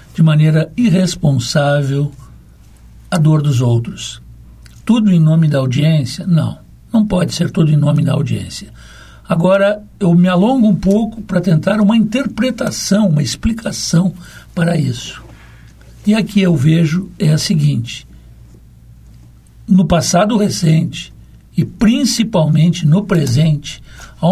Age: 60-79